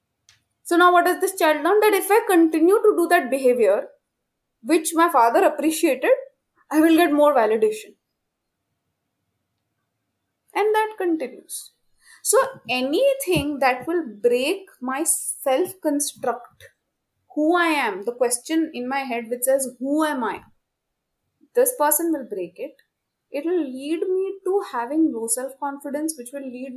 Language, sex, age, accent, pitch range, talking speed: Hindi, female, 20-39, native, 250-350 Hz, 145 wpm